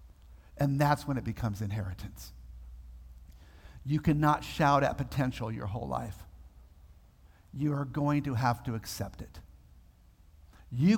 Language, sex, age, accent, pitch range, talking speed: English, male, 50-69, American, 140-195 Hz, 125 wpm